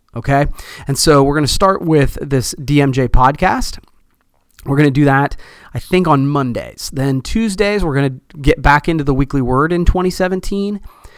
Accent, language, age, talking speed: American, English, 30-49, 175 wpm